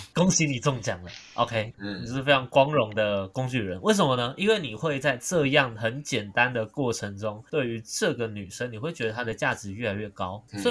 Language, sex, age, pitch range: Chinese, male, 20-39, 110-150 Hz